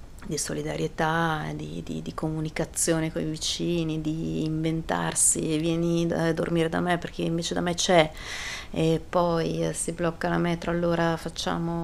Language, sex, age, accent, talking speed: Italian, female, 30-49, native, 145 wpm